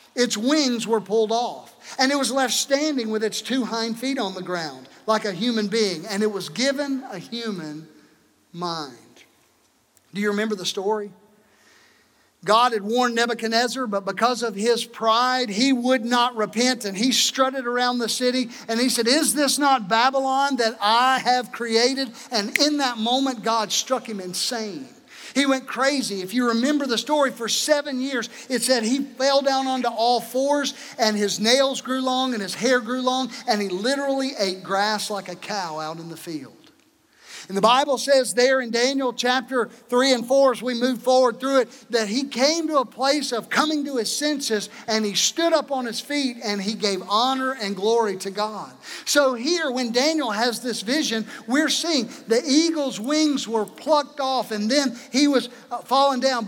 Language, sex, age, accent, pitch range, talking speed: English, male, 50-69, American, 215-265 Hz, 190 wpm